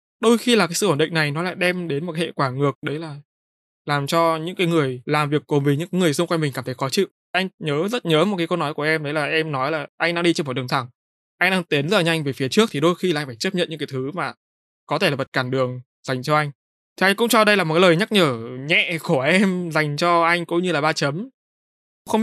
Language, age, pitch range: Vietnamese, 20-39, 145-175 Hz